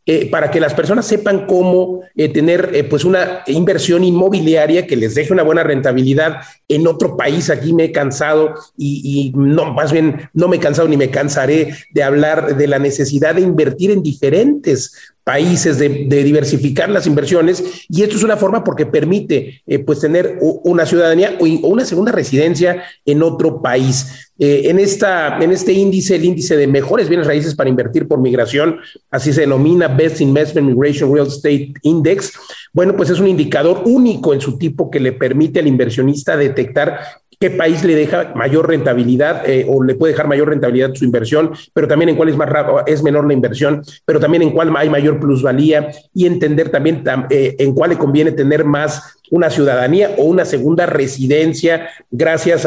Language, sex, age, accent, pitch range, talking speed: Spanish, male, 40-59, Mexican, 145-175 Hz, 185 wpm